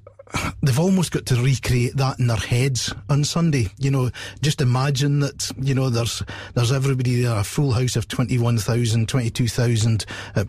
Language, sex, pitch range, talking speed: English, male, 110-140 Hz, 190 wpm